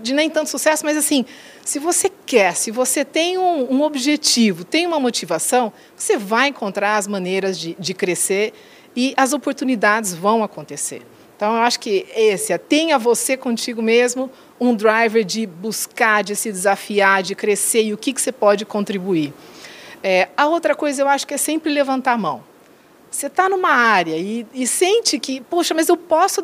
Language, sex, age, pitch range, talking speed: Portuguese, female, 40-59, 210-305 Hz, 185 wpm